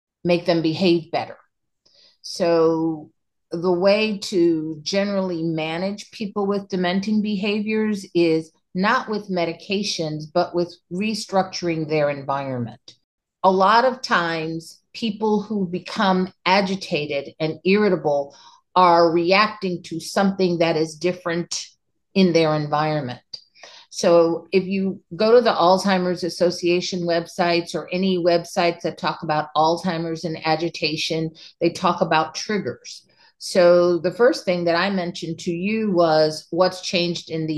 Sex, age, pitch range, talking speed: female, 50-69, 160-195 Hz, 125 wpm